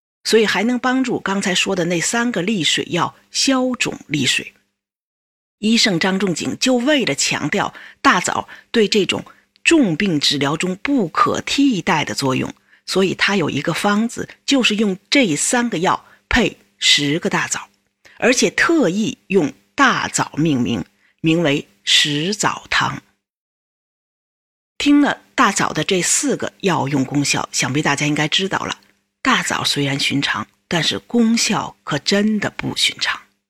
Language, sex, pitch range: Chinese, female, 170-235 Hz